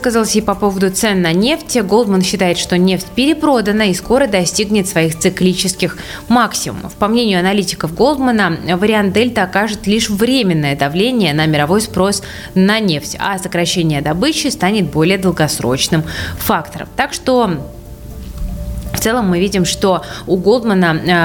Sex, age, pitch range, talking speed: female, 20-39, 165-215 Hz, 140 wpm